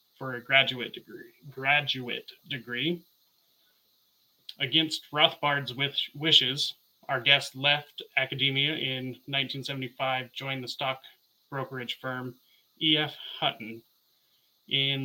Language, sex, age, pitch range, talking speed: English, male, 30-49, 130-150 Hz, 90 wpm